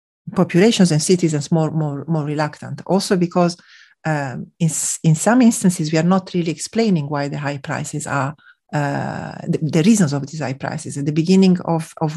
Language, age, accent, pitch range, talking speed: English, 40-59, Italian, 150-180 Hz, 180 wpm